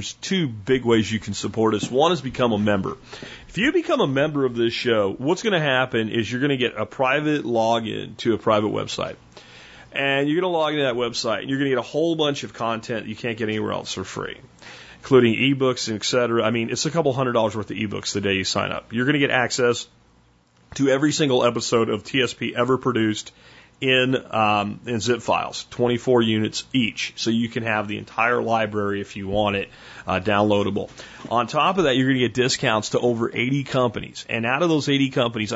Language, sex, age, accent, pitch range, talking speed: English, male, 30-49, American, 110-130 Hz, 230 wpm